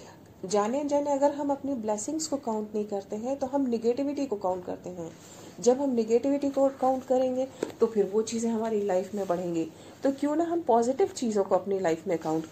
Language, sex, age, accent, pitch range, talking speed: Hindi, female, 40-59, native, 195-255 Hz, 205 wpm